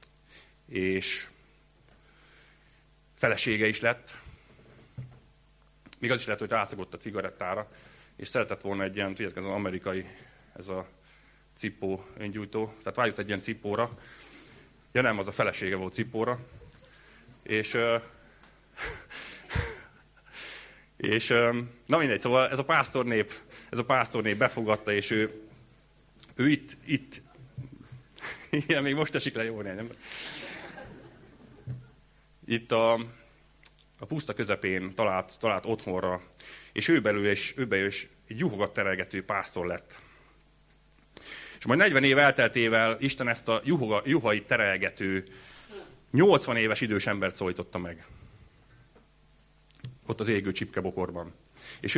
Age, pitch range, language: 30-49, 100-125 Hz, Hungarian